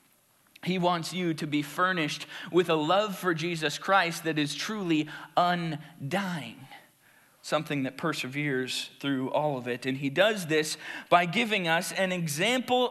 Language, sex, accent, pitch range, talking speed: English, male, American, 150-190 Hz, 150 wpm